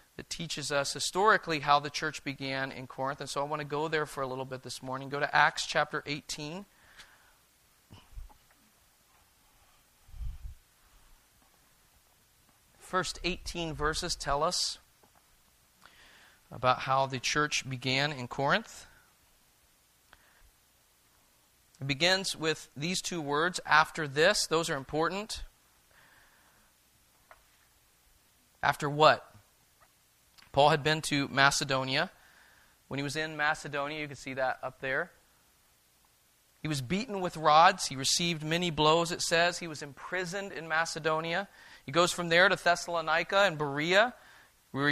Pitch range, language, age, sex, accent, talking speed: 135-170 Hz, English, 40-59, male, American, 130 wpm